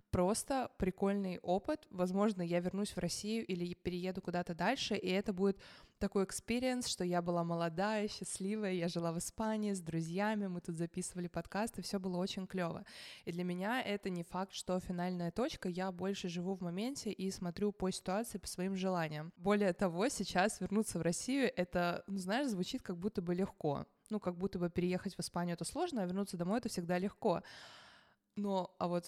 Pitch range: 175-205 Hz